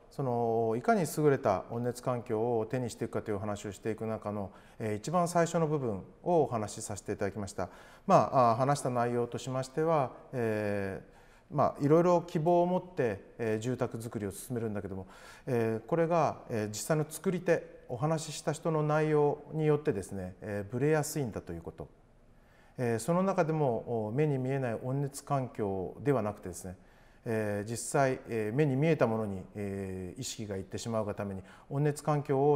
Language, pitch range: Japanese, 105-145 Hz